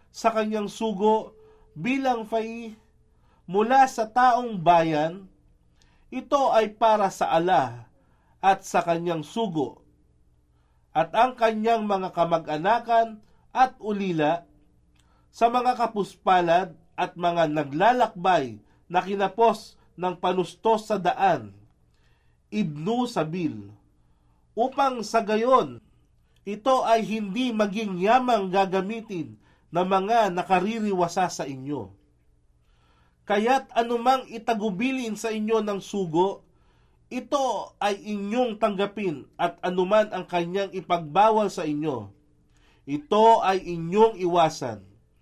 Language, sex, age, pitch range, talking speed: Filipino, male, 50-69, 145-225 Hz, 100 wpm